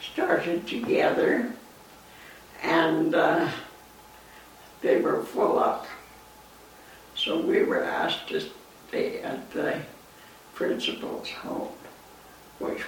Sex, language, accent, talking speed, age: female, English, American, 90 wpm, 60-79